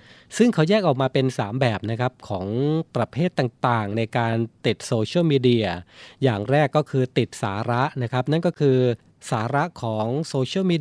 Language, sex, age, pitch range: Thai, male, 20-39, 115-145 Hz